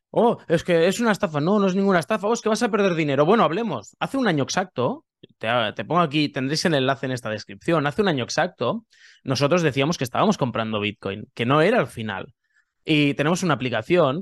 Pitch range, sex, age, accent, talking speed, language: 120-170 Hz, male, 20-39, Spanish, 225 wpm, Spanish